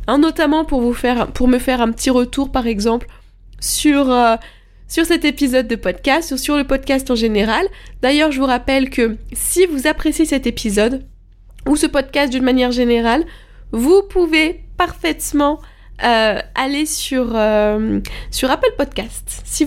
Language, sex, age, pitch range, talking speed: French, female, 20-39, 230-280 Hz, 145 wpm